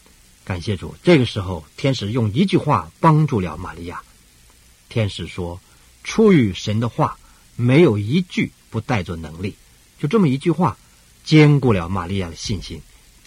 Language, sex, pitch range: Chinese, male, 85-130 Hz